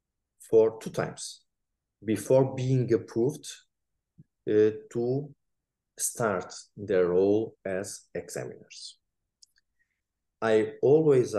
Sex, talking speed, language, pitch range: male, 80 wpm, English, 105-150 Hz